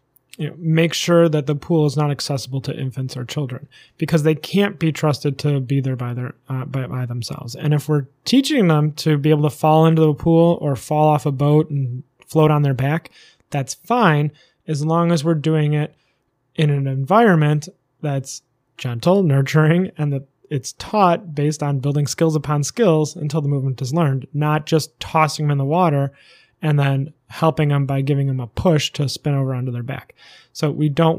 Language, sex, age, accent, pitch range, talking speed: English, male, 20-39, American, 135-155 Hz, 195 wpm